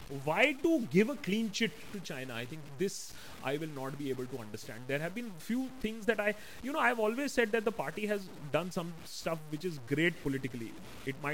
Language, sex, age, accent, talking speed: Hindi, male, 30-49, native, 290 wpm